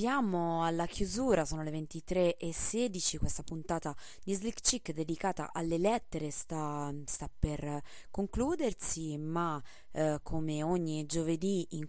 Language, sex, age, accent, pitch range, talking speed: Italian, female, 20-39, native, 155-195 Hz, 120 wpm